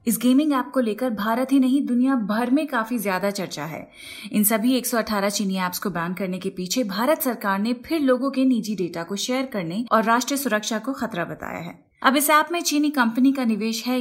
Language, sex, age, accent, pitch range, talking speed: Hindi, female, 30-49, native, 210-265 Hz, 225 wpm